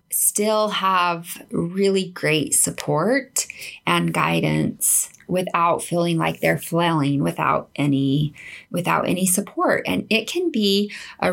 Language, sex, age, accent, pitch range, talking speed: English, female, 20-39, American, 165-200 Hz, 115 wpm